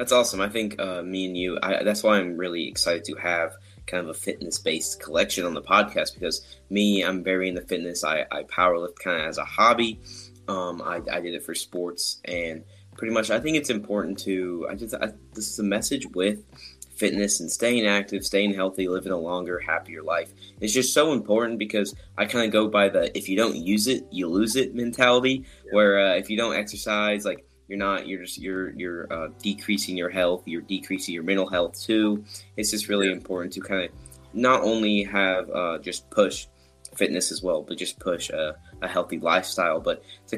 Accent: American